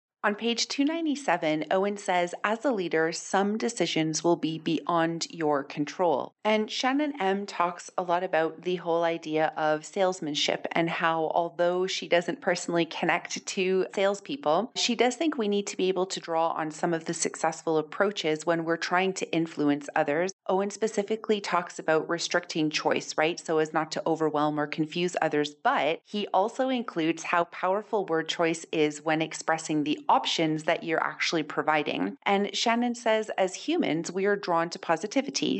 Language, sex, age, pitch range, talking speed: English, female, 30-49, 155-195 Hz, 170 wpm